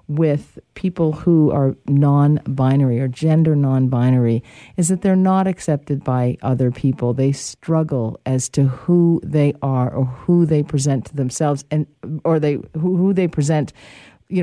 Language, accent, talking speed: English, American, 160 wpm